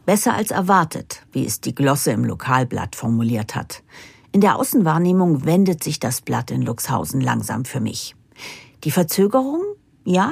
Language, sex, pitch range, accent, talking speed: German, female, 130-180 Hz, German, 150 wpm